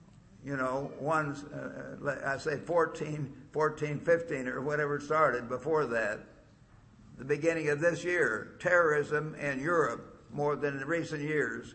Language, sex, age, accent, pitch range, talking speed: English, male, 60-79, American, 145-165 Hz, 140 wpm